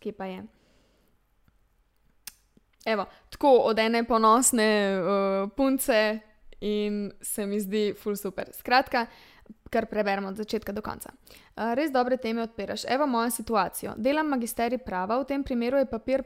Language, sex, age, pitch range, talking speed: English, female, 20-39, 215-265 Hz, 140 wpm